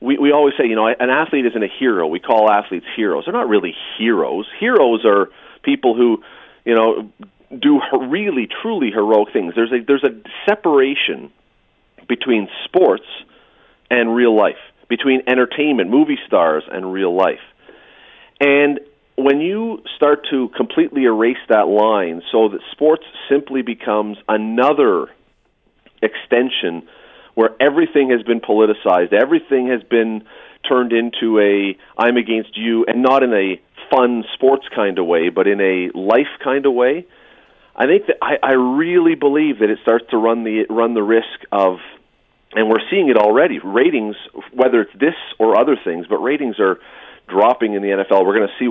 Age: 40-59